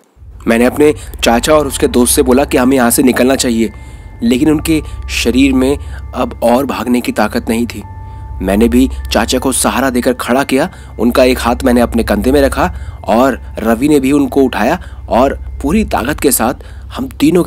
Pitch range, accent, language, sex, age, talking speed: 85-130 Hz, native, Hindi, male, 30-49, 185 wpm